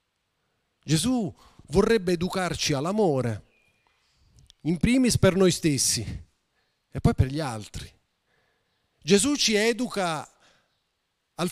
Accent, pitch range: native, 140-220 Hz